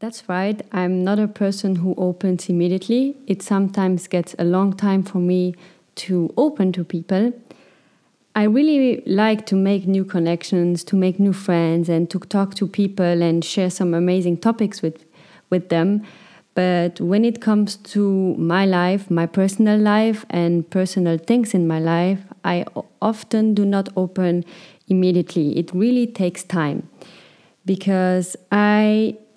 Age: 30-49